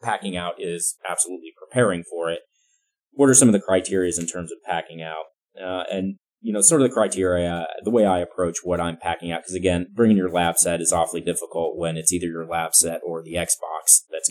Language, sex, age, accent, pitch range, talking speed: English, male, 30-49, American, 85-130 Hz, 220 wpm